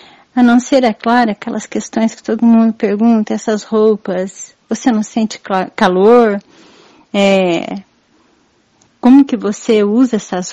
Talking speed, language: 125 wpm, Portuguese